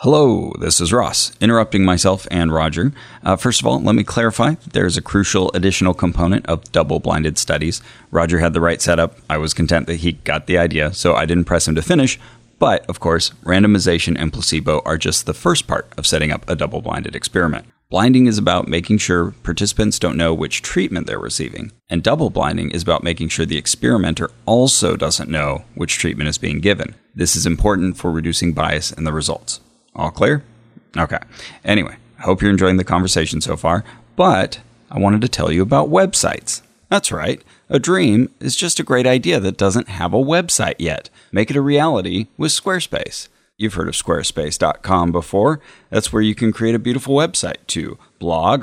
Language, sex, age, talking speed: English, male, 30-49, 190 wpm